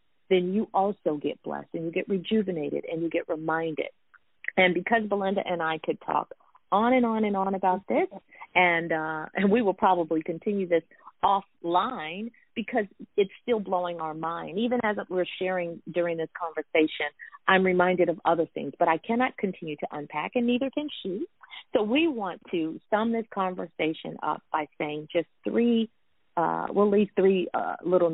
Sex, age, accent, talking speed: female, 40-59, American, 175 wpm